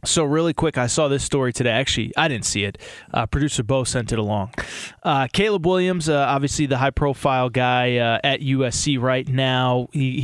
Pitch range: 135-185 Hz